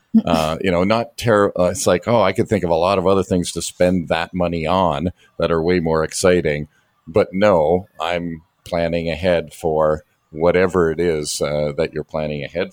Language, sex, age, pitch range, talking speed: English, male, 50-69, 85-100 Hz, 200 wpm